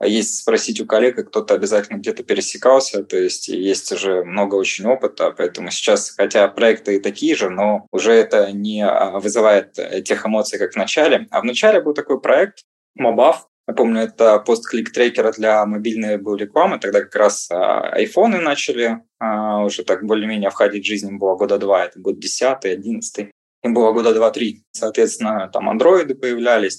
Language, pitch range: Russian, 105-150 Hz